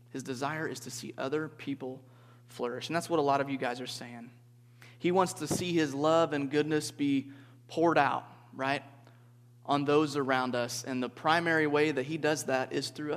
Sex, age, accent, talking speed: male, 30-49, American, 200 wpm